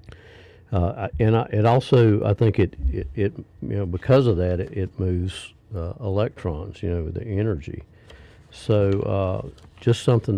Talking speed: 160 wpm